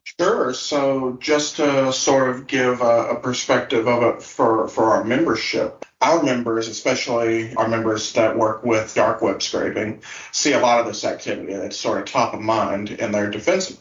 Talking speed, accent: 185 wpm, American